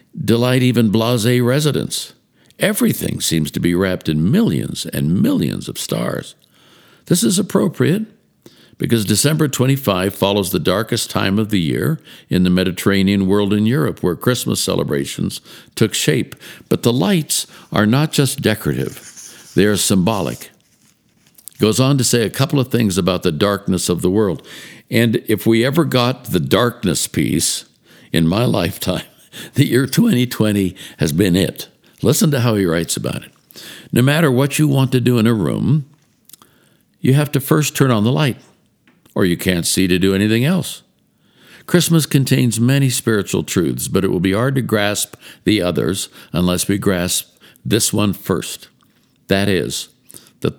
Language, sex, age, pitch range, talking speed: English, male, 60-79, 95-130 Hz, 160 wpm